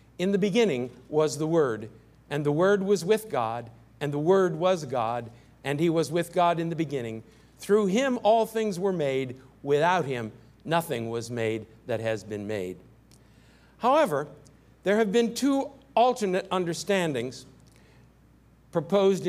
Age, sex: 50-69, male